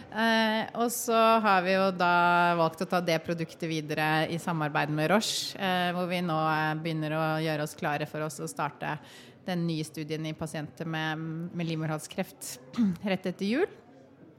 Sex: female